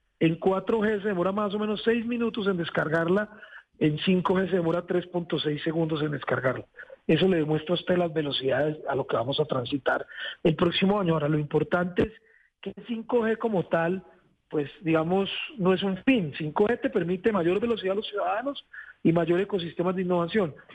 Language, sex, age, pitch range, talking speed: Spanish, male, 40-59, 160-195 Hz, 180 wpm